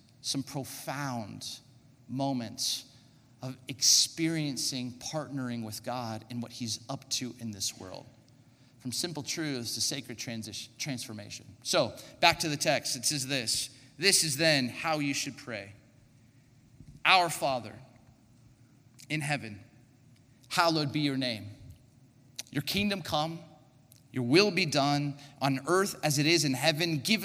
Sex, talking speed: male, 135 wpm